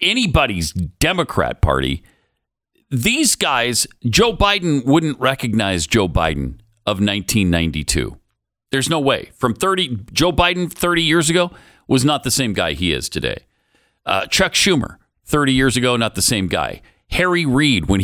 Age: 50-69